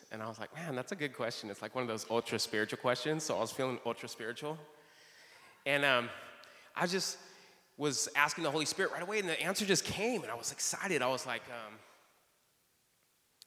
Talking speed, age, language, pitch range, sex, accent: 200 wpm, 30-49, English, 110-145 Hz, male, American